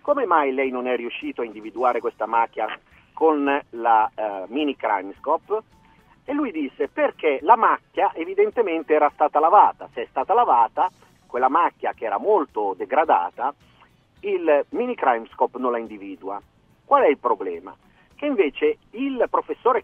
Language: Italian